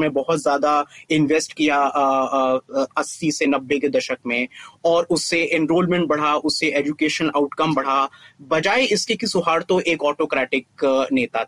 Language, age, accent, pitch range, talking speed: Hindi, 30-49, native, 160-215 Hz, 130 wpm